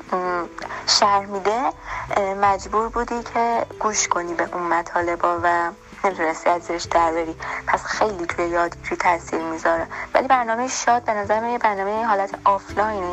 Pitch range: 180-215 Hz